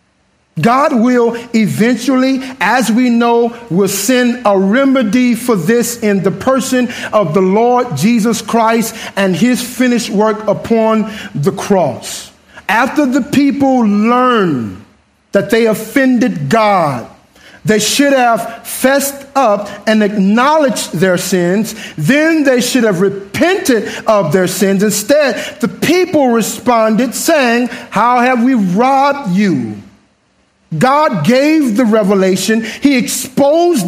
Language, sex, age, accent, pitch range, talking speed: English, male, 50-69, American, 210-275 Hz, 120 wpm